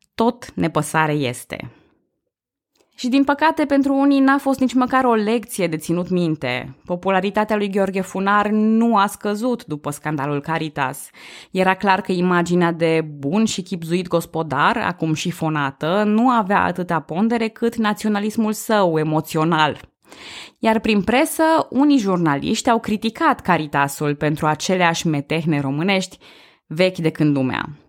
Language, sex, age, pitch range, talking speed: Romanian, female, 20-39, 155-215 Hz, 135 wpm